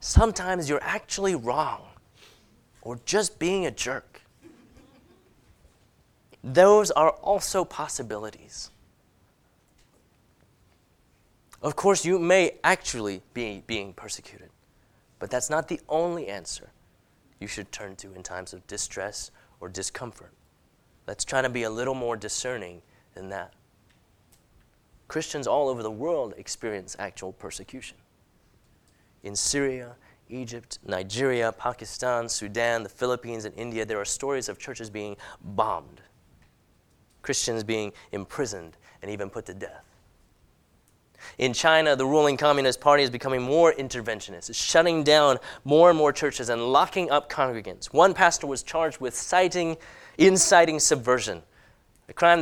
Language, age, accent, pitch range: English, 30-49, American, 110-165 Hz